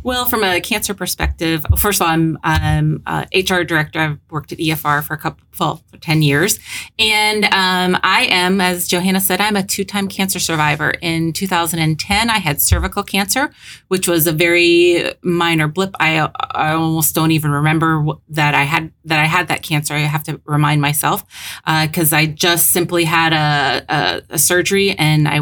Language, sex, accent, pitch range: English, female, American, 155-180 Hz